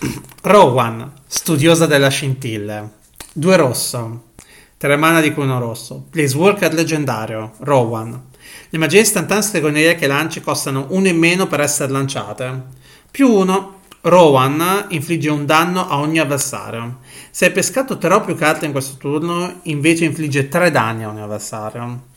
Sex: male